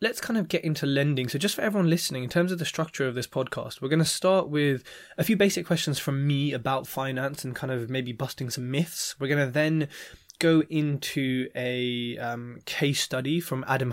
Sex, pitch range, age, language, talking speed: male, 130-160 Hz, 20-39, English, 220 wpm